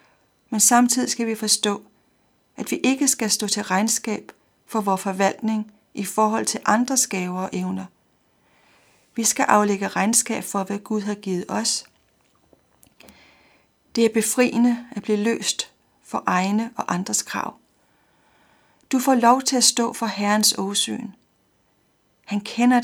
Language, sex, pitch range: Danish, female, 210-245 Hz